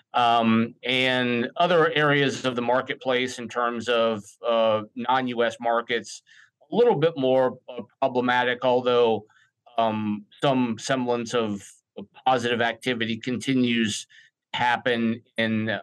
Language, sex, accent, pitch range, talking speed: English, male, American, 115-135 Hz, 105 wpm